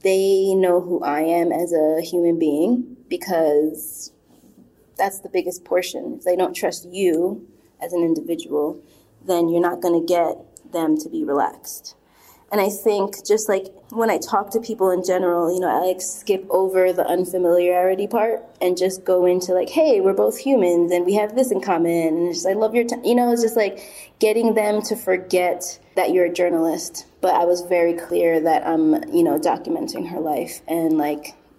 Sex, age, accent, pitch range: female, 20-39, American, 170-205 Hz